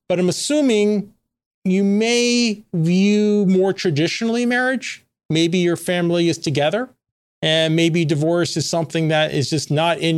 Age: 40-59